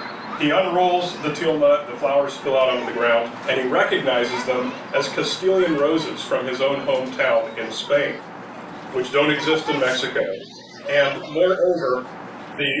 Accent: American